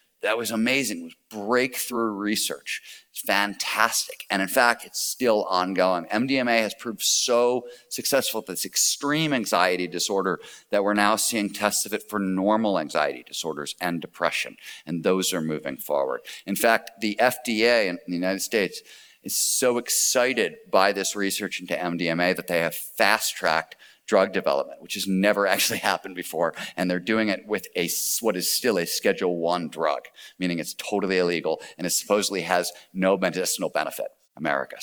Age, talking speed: 40-59, 165 wpm